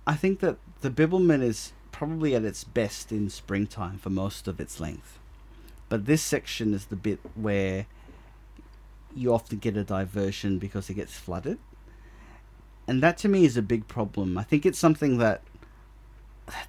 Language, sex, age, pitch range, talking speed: English, male, 30-49, 100-135 Hz, 165 wpm